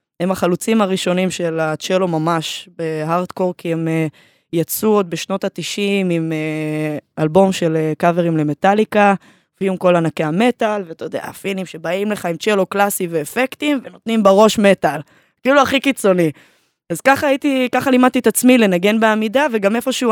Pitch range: 170-210 Hz